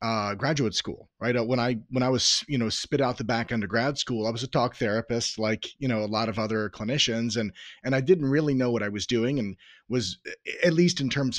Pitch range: 110-130 Hz